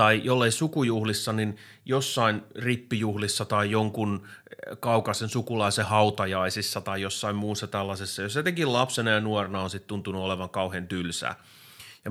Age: 30-49